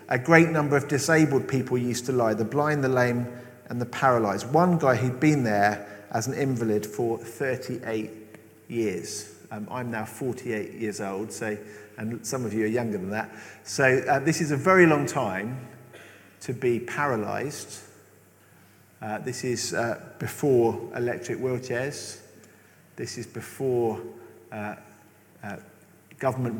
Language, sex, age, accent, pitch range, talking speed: English, male, 50-69, British, 110-150 Hz, 150 wpm